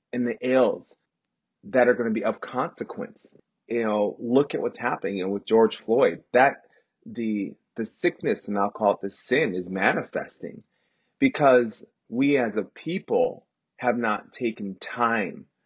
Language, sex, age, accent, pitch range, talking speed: English, male, 30-49, American, 100-125 Hz, 155 wpm